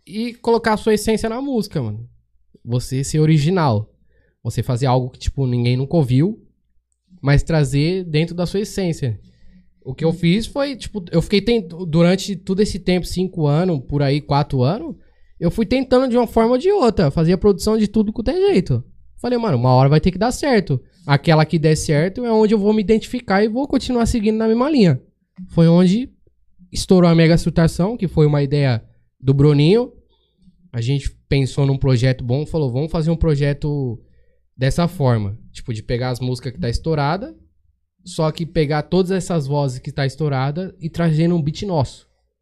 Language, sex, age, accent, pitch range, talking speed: Portuguese, male, 10-29, Brazilian, 125-190 Hz, 190 wpm